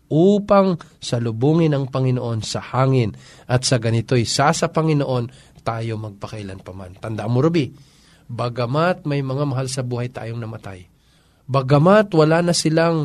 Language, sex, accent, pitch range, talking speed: Filipino, male, native, 115-155 Hz, 135 wpm